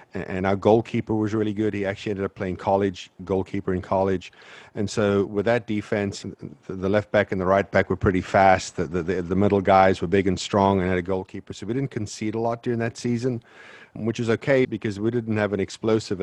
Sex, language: male, English